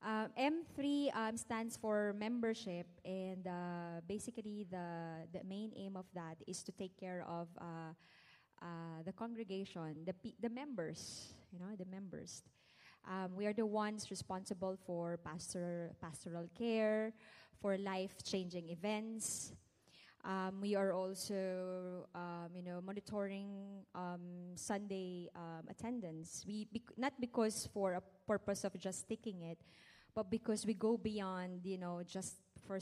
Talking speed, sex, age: 145 wpm, female, 20-39